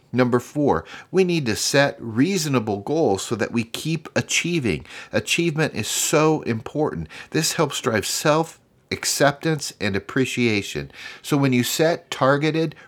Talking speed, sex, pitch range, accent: 130 wpm, male, 110-155 Hz, American